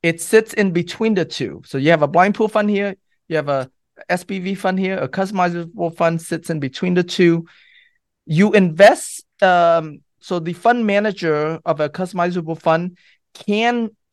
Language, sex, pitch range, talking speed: English, male, 150-190 Hz, 170 wpm